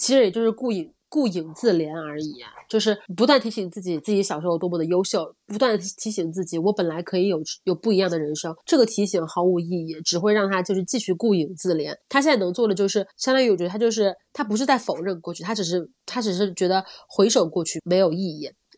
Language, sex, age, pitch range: Chinese, female, 20-39, 170-210 Hz